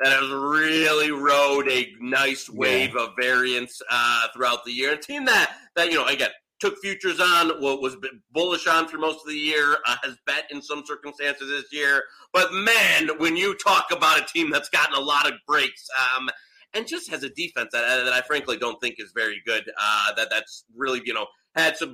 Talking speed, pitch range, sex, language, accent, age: 215 wpm, 130-165 Hz, male, English, American, 30-49